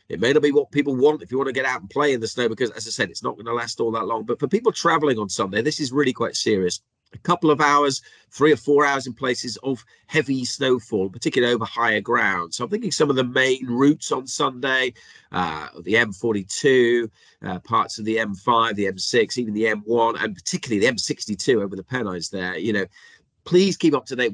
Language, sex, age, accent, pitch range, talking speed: English, male, 40-59, British, 110-145 Hz, 235 wpm